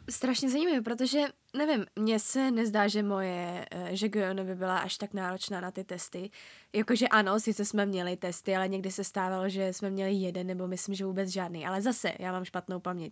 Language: Czech